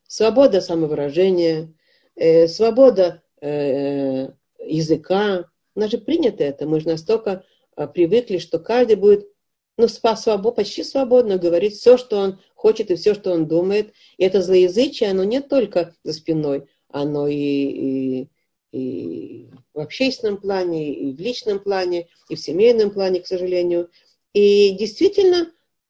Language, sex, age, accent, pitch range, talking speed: Russian, female, 40-59, native, 170-240 Hz, 130 wpm